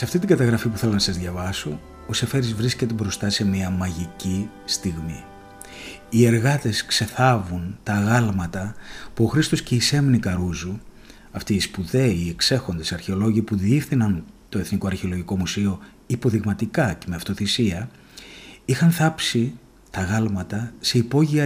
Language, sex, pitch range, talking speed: Greek, male, 95-125 Hz, 145 wpm